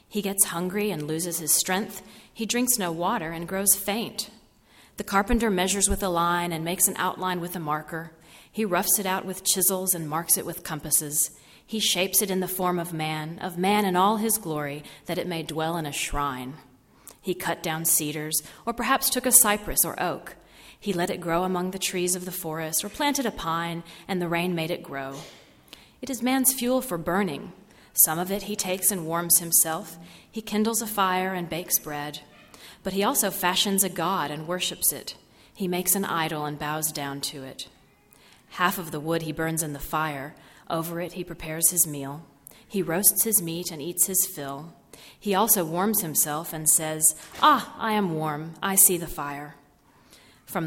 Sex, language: female, English